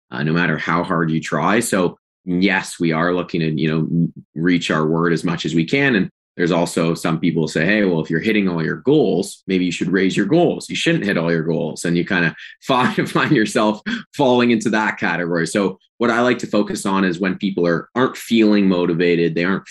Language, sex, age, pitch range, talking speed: English, male, 20-39, 80-95 Hz, 230 wpm